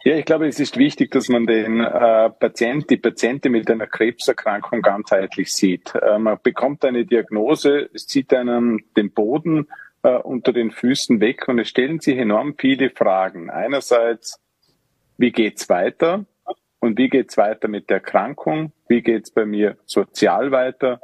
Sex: male